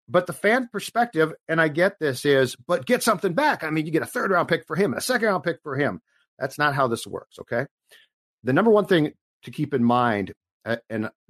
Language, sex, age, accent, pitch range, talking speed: English, male, 50-69, American, 120-160 Hz, 225 wpm